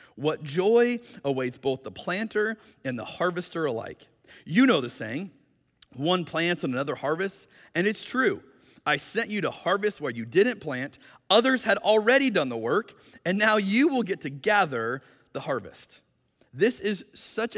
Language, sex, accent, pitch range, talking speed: English, male, American, 145-220 Hz, 165 wpm